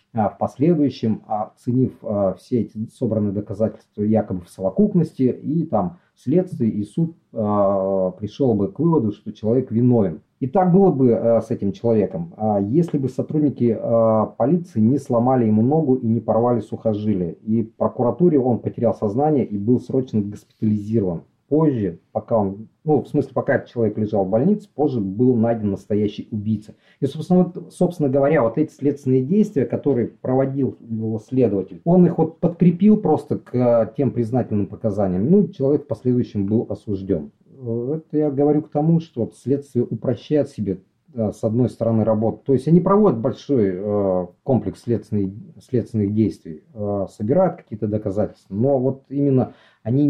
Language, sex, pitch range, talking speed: Russian, male, 105-145 Hz, 155 wpm